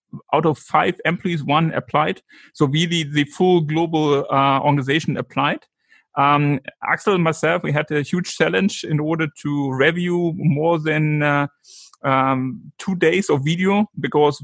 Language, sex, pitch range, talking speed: English, male, 140-165 Hz, 150 wpm